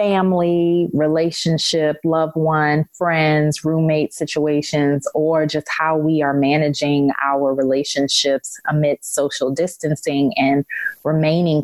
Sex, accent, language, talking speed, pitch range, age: female, American, English, 105 wpm, 135-165 Hz, 30-49